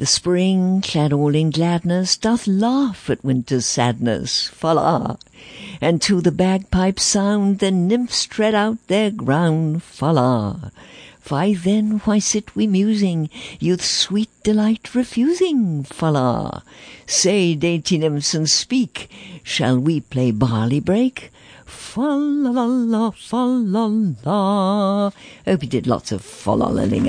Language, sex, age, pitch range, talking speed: English, female, 60-79, 125-210 Hz, 120 wpm